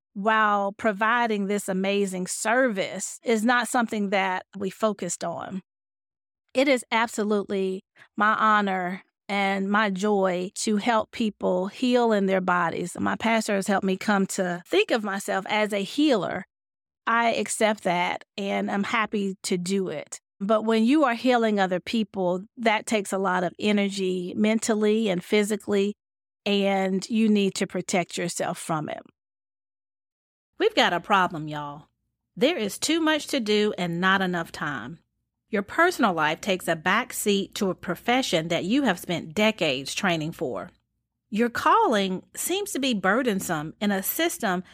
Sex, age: female, 40-59